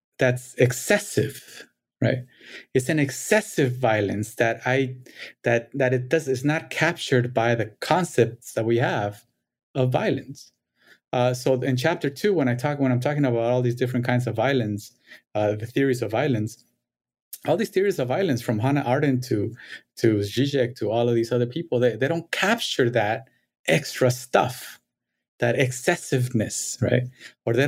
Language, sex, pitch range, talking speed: English, male, 115-135 Hz, 165 wpm